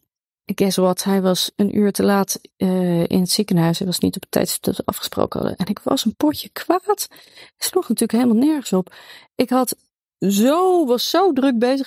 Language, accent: Dutch, Dutch